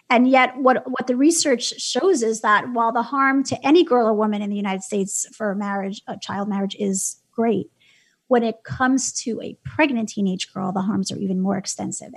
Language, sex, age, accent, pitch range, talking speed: English, female, 30-49, American, 205-255 Hz, 210 wpm